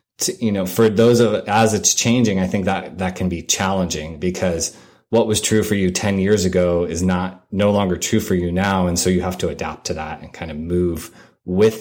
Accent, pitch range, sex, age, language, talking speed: American, 90-105 Hz, male, 30-49, English, 230 wpm